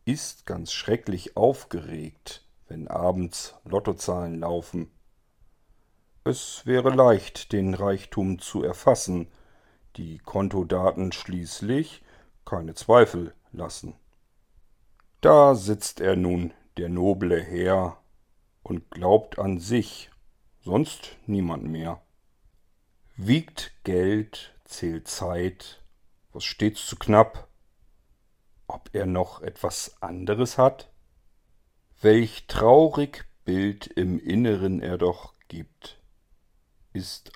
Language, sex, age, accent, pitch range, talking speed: German, male, 50-69, German, 85-110 Hz, 95 wpm